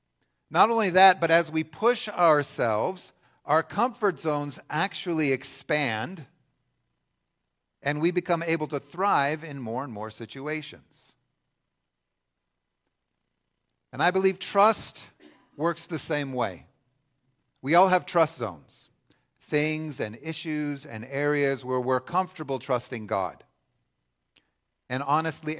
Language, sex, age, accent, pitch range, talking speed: English, male, 50-69, American, 110-150 Hz, 115 wpm